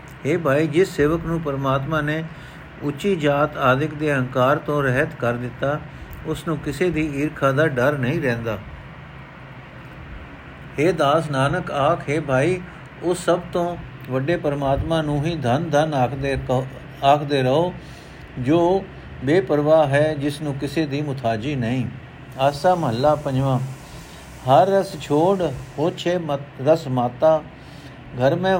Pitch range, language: 135-165 Hz, Punjabi